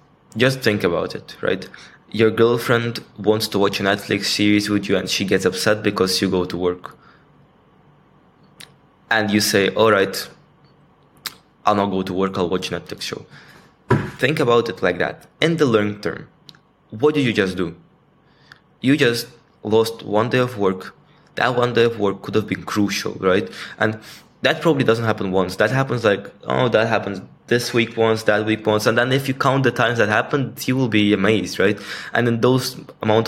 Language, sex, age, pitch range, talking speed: English, male, 20-39, 100-120 Hz, 190 wpm